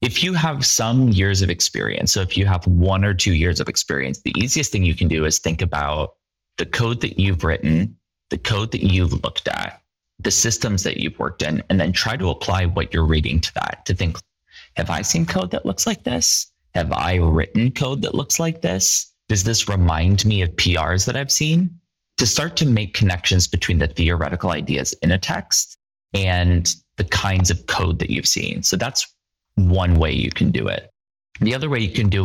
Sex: male